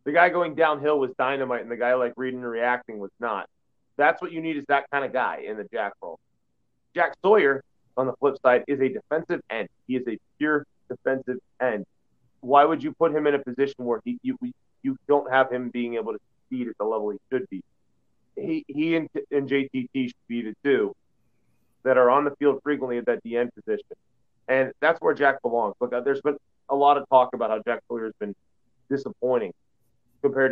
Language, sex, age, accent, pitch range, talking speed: English, male, 30-49, American, 120-140 Hz, 210 wpm